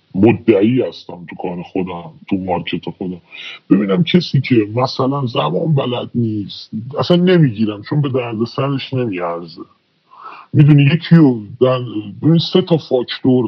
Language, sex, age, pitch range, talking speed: Persian, female, 30-49, 110-145 Hz, 130 wpm